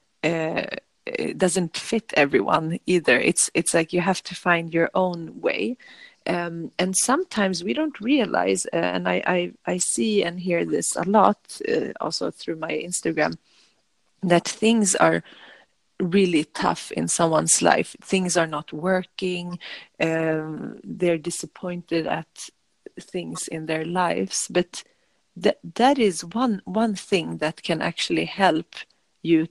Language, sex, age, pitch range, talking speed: English, female, 30-49, 165-200 Hz, 140 wpm